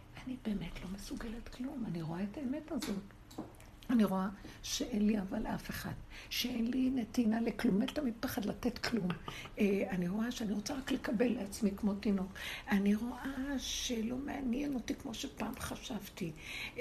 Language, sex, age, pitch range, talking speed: Hebrew, female, 60-79, 185-255 Hz, 155 wpm